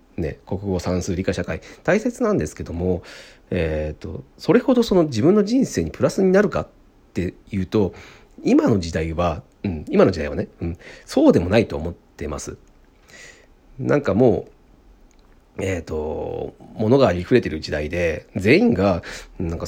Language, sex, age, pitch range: Japanese, male, 40-59, 85-135 Hz